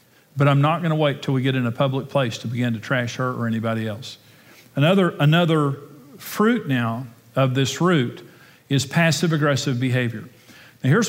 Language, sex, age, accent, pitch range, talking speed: English, male, 50-69, American, 130-155 Hz, 180 wpm